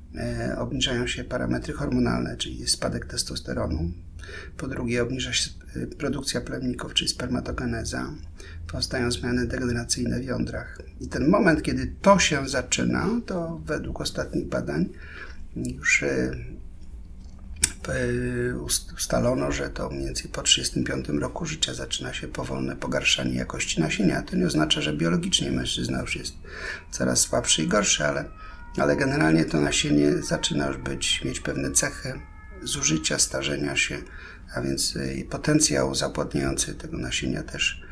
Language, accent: Polish, native